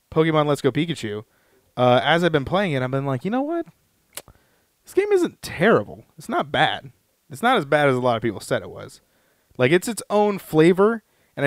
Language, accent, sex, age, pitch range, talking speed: English, American, male, 20-39, 125-155 Hz, 215 wpm